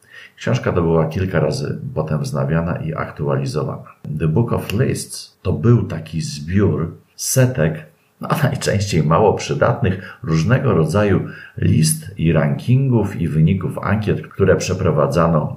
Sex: male